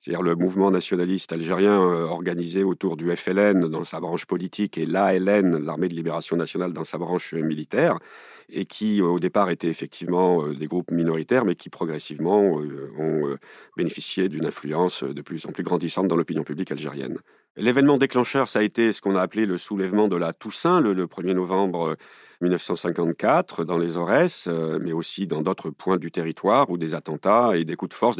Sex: male